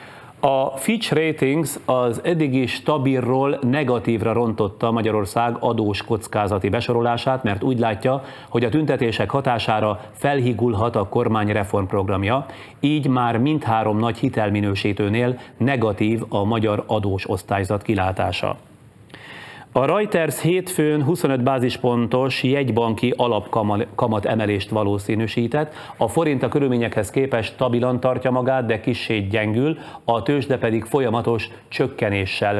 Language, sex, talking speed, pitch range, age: Hungarian, male, 110 wpm, 110-130 Hz, 30-49